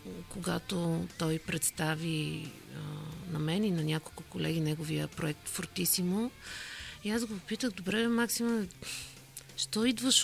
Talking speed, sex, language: 125 wpm, female, Bulgarian